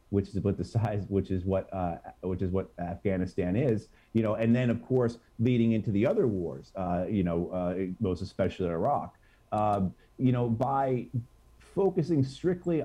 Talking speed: 175 wpm